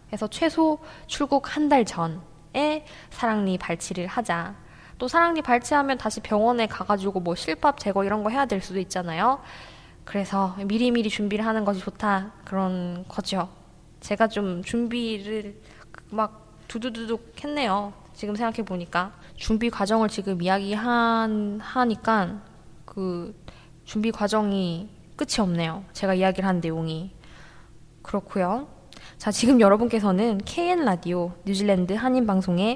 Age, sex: 10-29, female